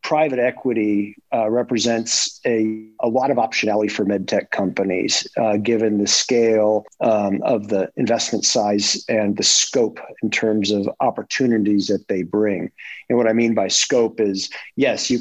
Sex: male